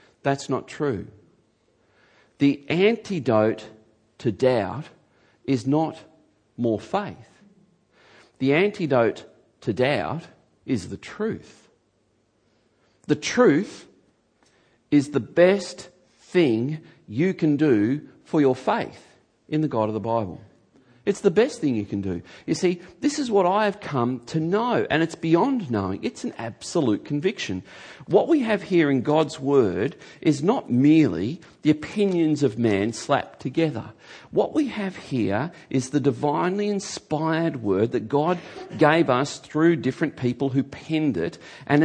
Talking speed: 140 wpm